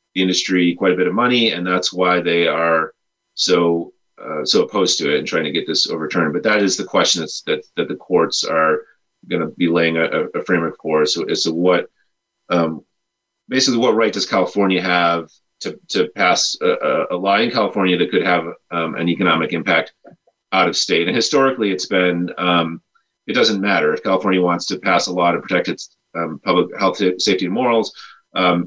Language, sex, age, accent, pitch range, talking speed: English, male, 30-49, American, 85-100 Hz, 205 wpm